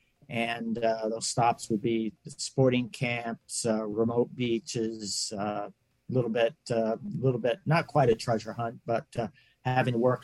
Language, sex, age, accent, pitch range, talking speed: English, male, 50-69, American, 115-140 Hz, 175 wpm